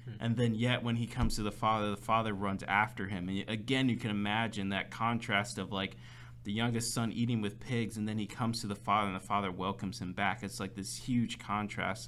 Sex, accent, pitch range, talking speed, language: male, American, 100-120 Hz, 235 wpm, English